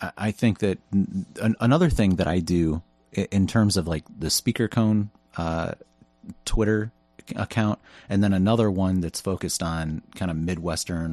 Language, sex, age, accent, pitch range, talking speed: English, male, 30-49, American, 75-100 Hz, 150 wpm